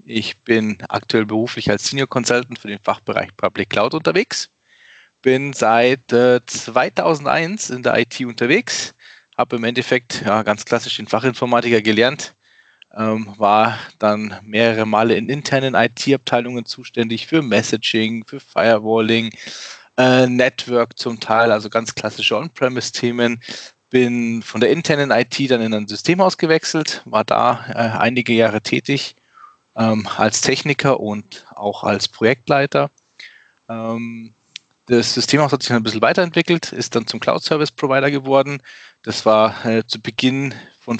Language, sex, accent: German, male, German